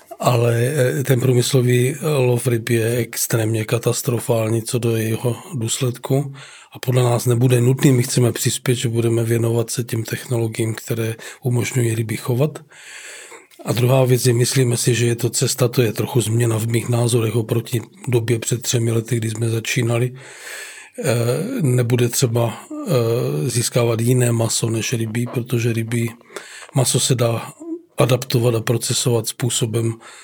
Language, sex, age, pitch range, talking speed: Czech, male, 40-59, 115-130 Hz, 140 wpm